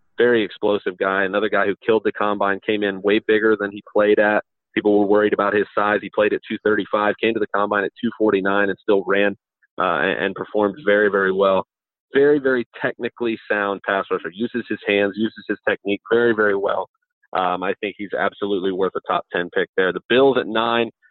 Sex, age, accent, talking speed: male, 30-49, American, 205 wpm